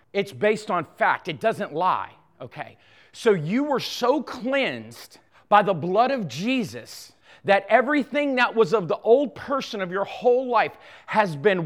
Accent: American